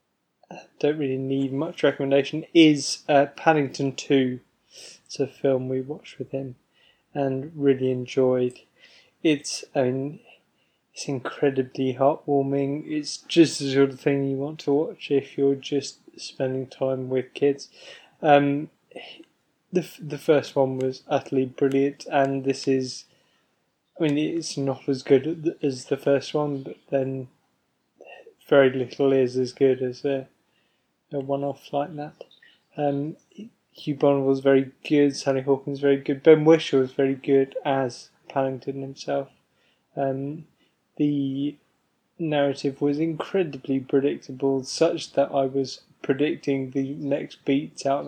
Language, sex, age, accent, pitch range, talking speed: English, male, 20-39, British, 135-145 Hz, 135 wpm